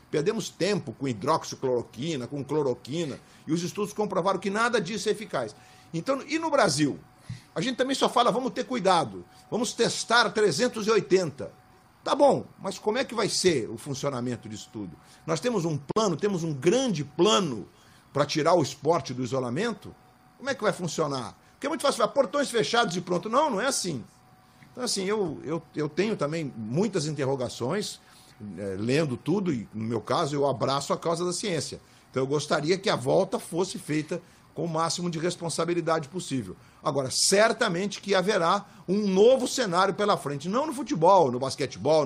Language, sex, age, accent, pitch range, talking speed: Portuguese, male, 50-69, Brazilian, 140-215 Hz, 175 wpm